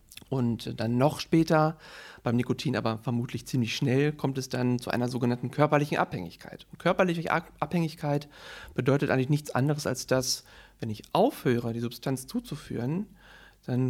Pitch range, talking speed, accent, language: 120-150 Hz, 145 wpm, German, German